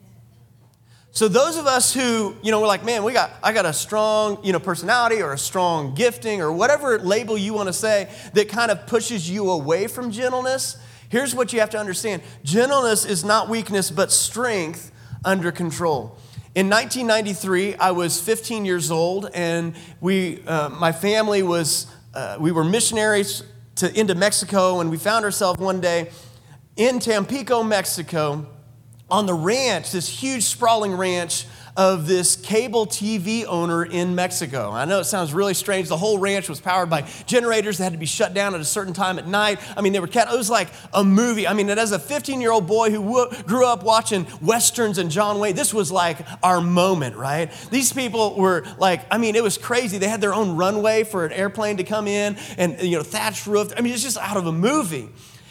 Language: English